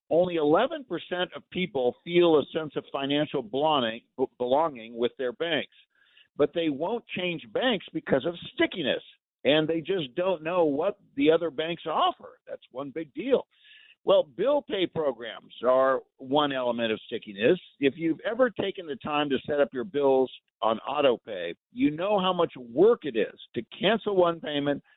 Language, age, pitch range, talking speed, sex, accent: English, 50-69, 140-205 Hz, 165 wpm, male, American